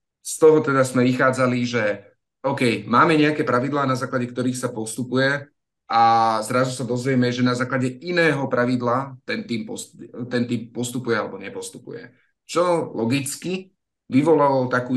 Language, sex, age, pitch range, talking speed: Slovak, male, 30-49, 115-130 Hz, 130 wpm